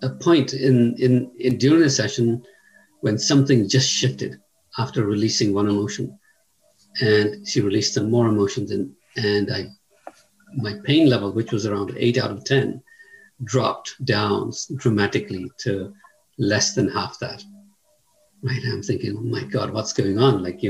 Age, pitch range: 50-69, 105-140 Hz